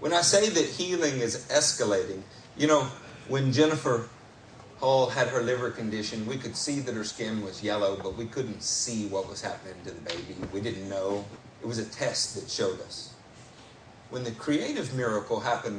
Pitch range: 110-140 Hz